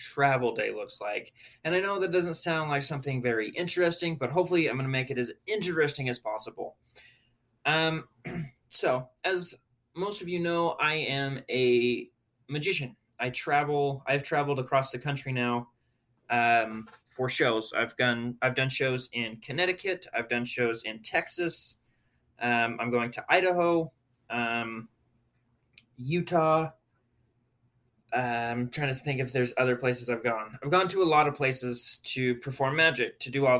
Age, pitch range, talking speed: 20-39, 120-150 Hz, 160 wpm